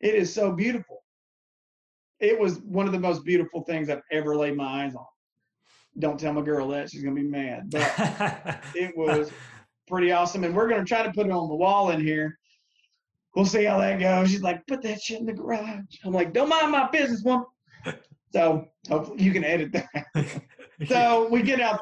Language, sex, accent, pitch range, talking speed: English, male, American, 150-190 Hz, 205 wpm